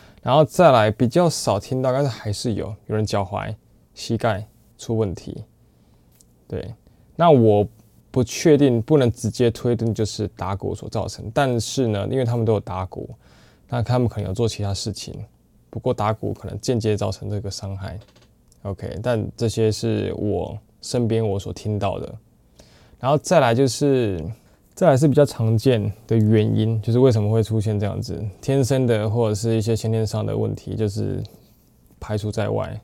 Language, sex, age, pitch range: Chinese, male, 20-39, 100-115 Hz